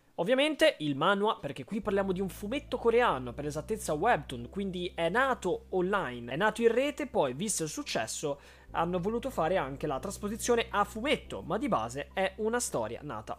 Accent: native